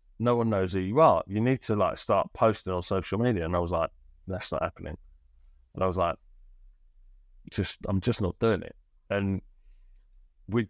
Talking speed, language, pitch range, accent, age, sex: 190 wpm, English, 75-100 Hz, British, 20-39, male